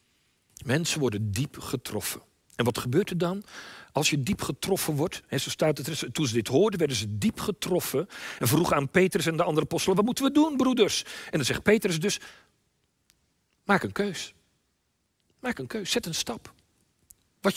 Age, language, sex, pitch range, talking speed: 50-69, Dutch, male, 155-220 Hz, 190 wpm